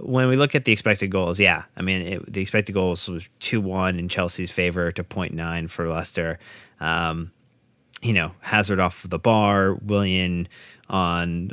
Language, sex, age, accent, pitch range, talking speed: English, male, 30-49, American, 90-115 Hz, 160 wpm